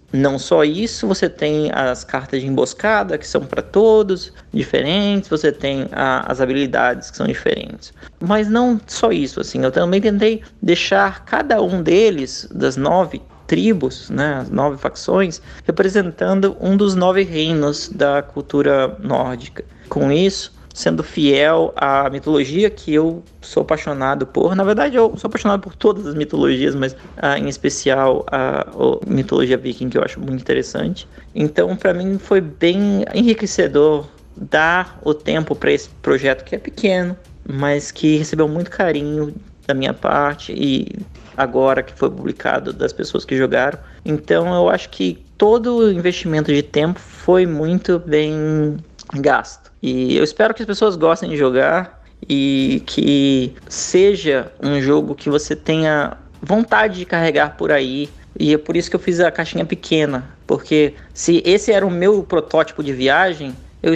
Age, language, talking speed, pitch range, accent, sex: 20-39, Portuguese, 155 wpm, 140-195 Hz, Brazilian, male